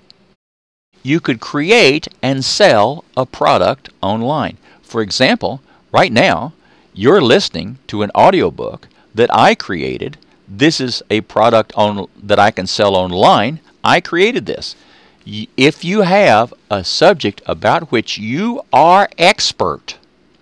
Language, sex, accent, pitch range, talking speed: English, male, American, 105-160 Hz, 125 wpm